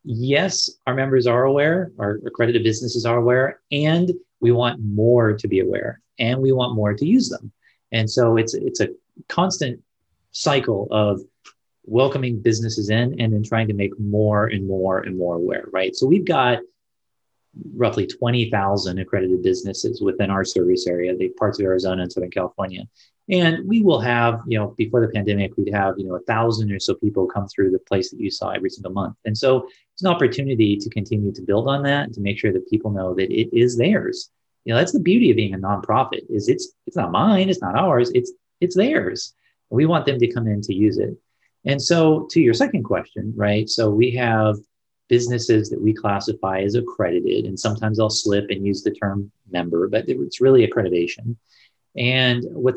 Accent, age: American, 30-49